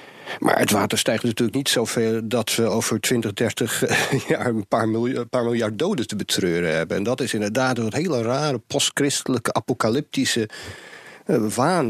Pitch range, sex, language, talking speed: 105-140 Hz, male, Dutch, 165 wpm